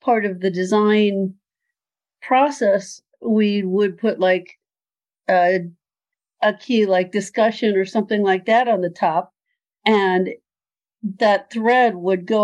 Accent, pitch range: American, 185-220 Hz